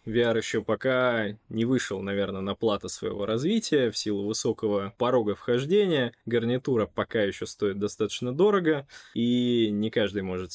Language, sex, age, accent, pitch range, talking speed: Russian, male, 20-39, native, 105-130 Hz, 140 wpm